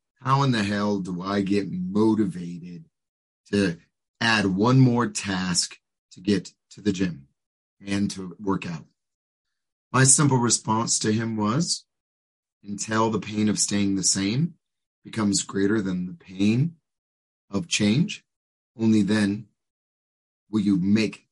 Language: English